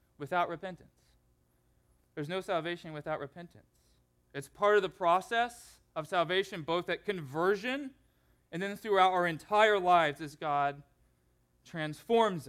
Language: English